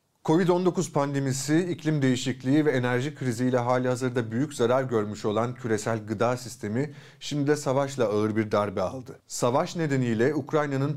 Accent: native